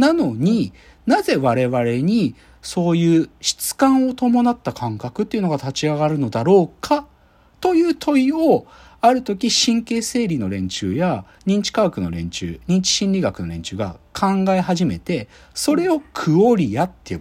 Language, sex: Japanese, male